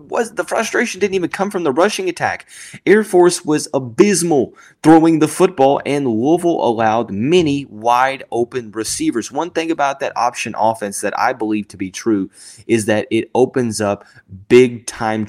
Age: 20-39